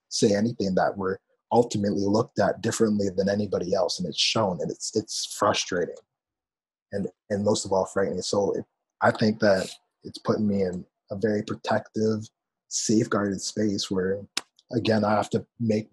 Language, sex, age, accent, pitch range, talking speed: English, male, 20-39, American, 105-130 Hz, 165 wpm